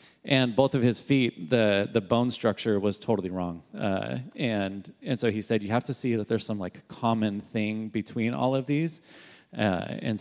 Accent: American